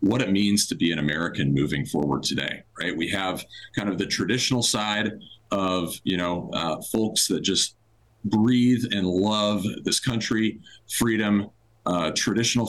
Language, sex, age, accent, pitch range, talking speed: English, male, 40-59, American, 95-115 Hz, 155 wpm